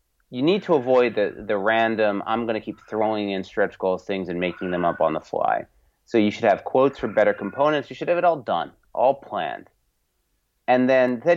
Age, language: 30-49, English